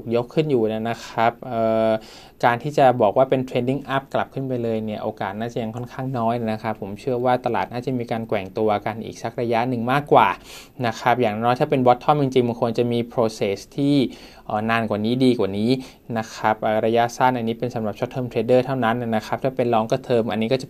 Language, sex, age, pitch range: Thai, male, 20-39, 115-135 Hz